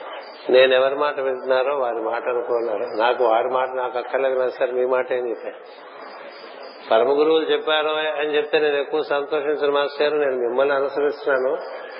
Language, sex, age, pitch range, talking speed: Telugu, male, 50-69, 130-150 Hz, 145 wpm